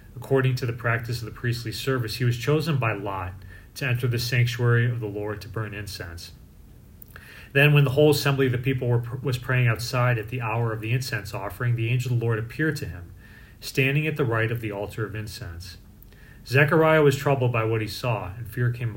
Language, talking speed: English, 215 wpm